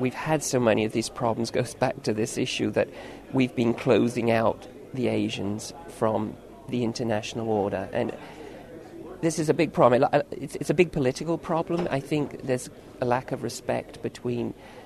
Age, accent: 40-59, British